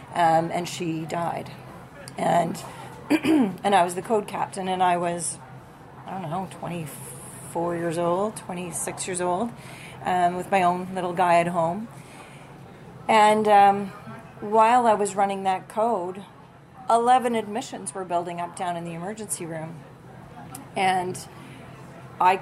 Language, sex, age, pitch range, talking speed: English, female, 40-59, 160-190 Hz, 135 wpm